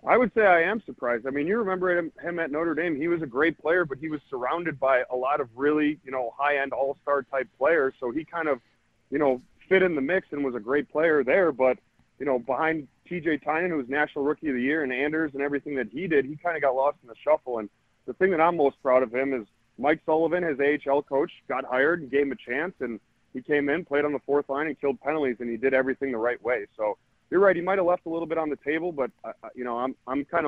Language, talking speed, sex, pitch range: English, 275 wpm, male, 120-150 Hz